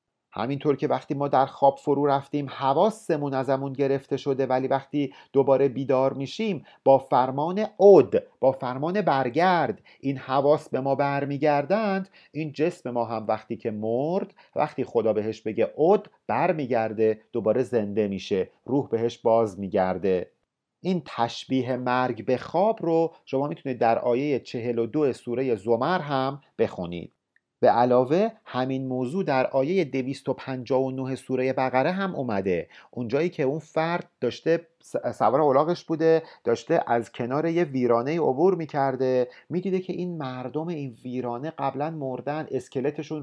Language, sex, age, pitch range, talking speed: Persian, male, 40-59, 125-165 Hz, 140 wpm